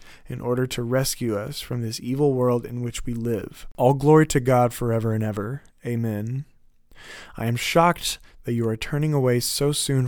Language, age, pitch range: English, 20-39, 115-135 Hz